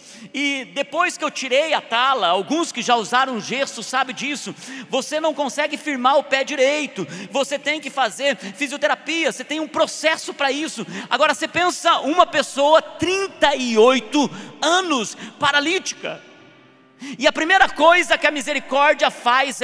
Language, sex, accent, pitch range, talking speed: Portuguese, male, Brazilian, 255-310 Hz, 145 wpm